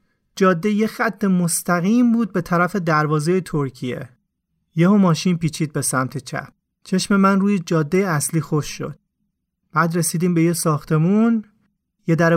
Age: 30-49